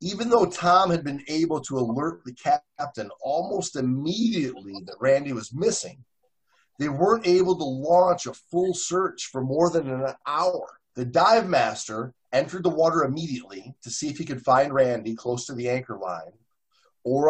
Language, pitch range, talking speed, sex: English, 125-175 Hz, 170 wpm, male